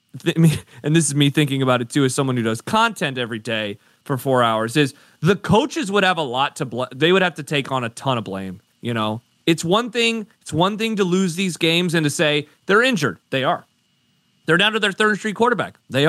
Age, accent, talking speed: 30-49, American, 235 wpm